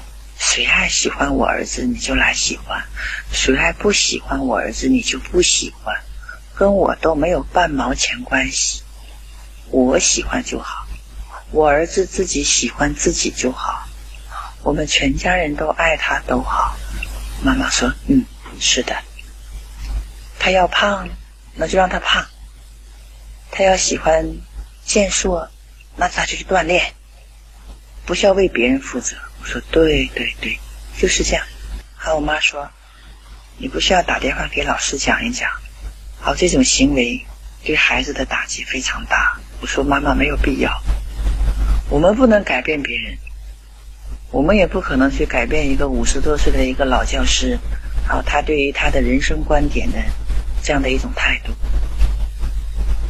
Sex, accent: female, native